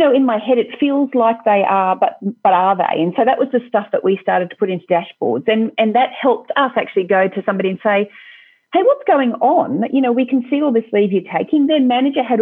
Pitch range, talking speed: 190-245 Hz, 255 wpm